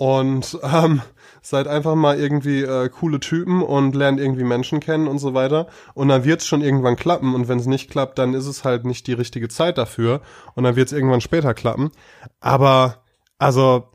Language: German